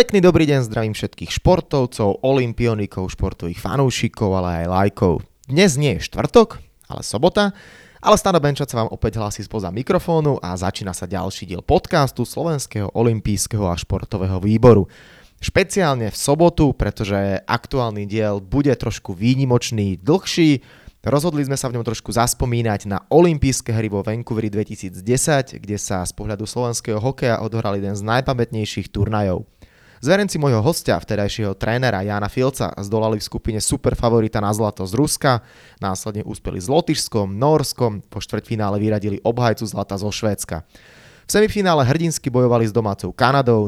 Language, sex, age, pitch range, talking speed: Slovak, male, 20-39, 100-135 Hz, 145 wpm